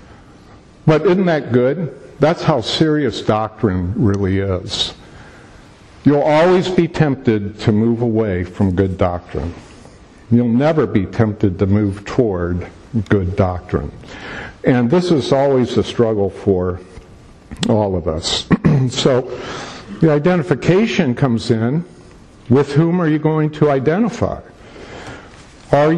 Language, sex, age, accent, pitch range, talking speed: English, male, 50-69, American, 105-150 Hz, 120 wpm